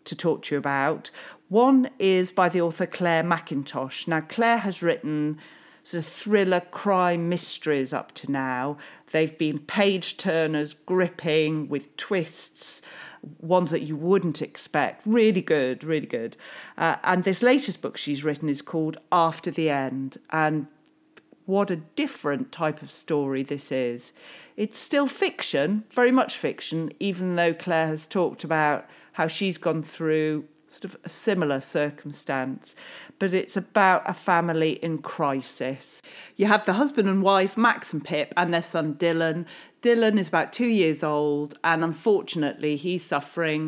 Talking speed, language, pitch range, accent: 150 wpm, English, 150-190 Hz, British